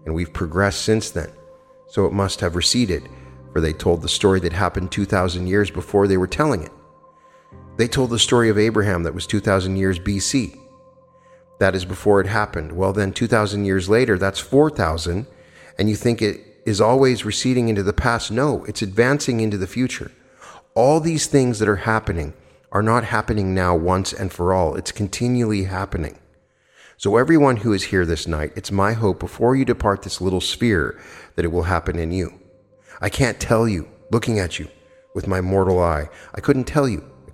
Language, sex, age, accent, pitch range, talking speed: English, male, 40-59, American, 90-115 Hz, 190 wpm